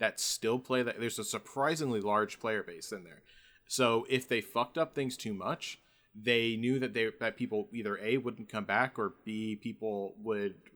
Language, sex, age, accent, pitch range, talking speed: English, male, 30-49, American, 105-130 Hz, 195 wpm